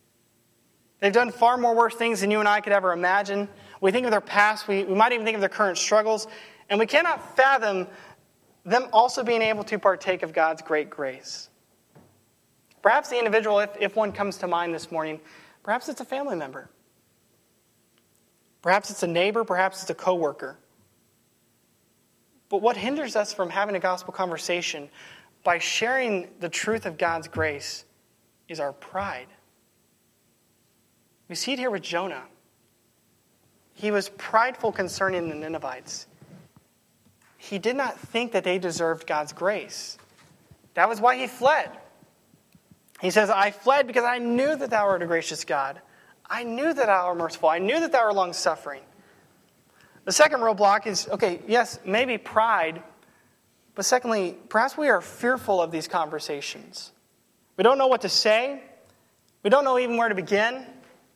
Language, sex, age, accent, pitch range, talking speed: English, male, 20-39, American, 175-230 Hz, 165 wpm